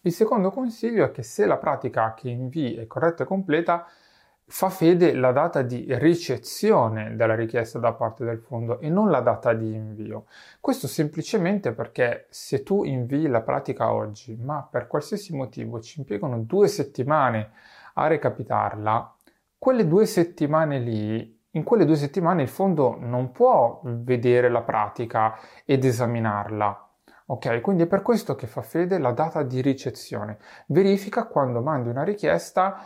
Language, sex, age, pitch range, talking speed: Italian, male, 30-49, 115-165 Hz, 155 wpm